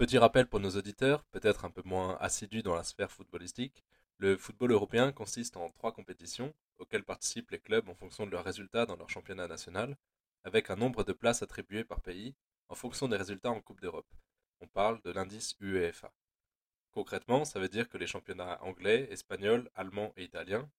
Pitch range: 95-120 Hz